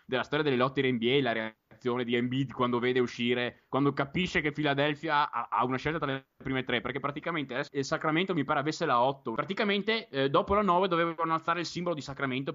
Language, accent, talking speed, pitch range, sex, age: Italian, native, 210 wpm, 130-185 Hz, male, 20-39